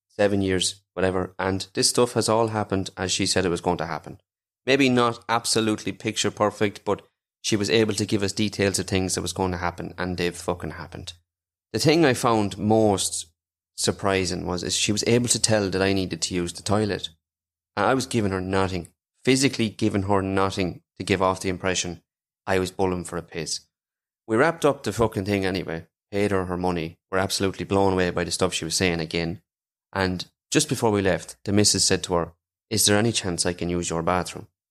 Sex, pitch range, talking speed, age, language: male, 90-110 Hz, 215 wpm, 30-49, English